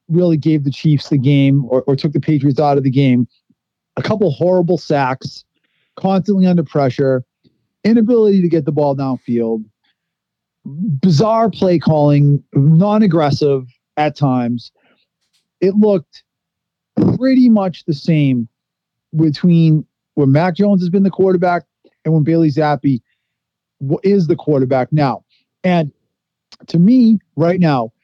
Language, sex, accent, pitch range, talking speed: English, male, American, 140-180 Hz, 130 wpm